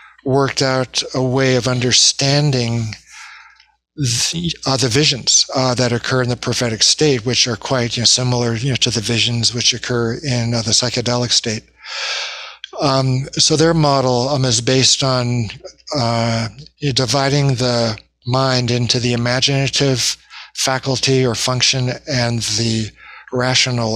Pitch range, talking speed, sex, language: 115-135 Hz, 130 wpm, male, English